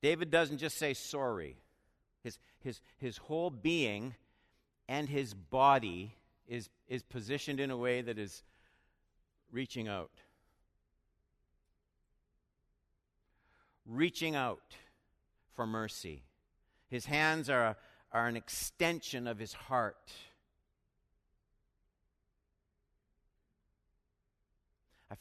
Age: 50-69